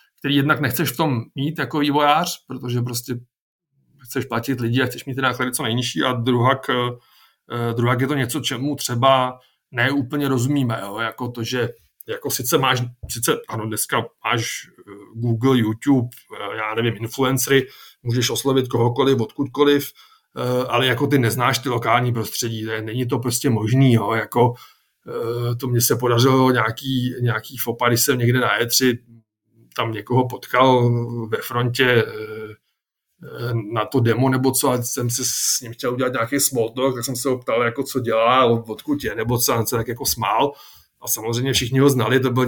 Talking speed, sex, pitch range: 160 wpm, male, 120-135 Hz